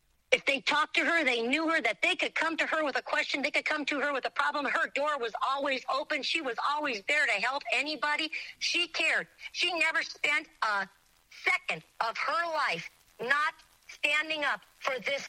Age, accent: 50-69, American